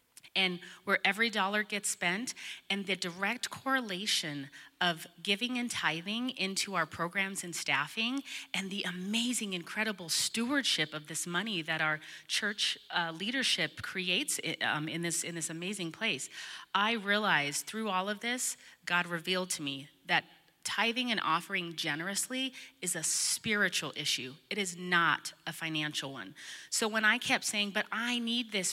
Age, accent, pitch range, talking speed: 30-49, American, 160-200 Hz, 155 wpm